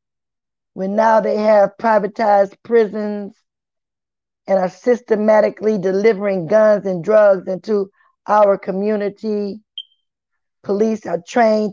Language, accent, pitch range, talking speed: English, American, 195-245 Hz, 95 wpm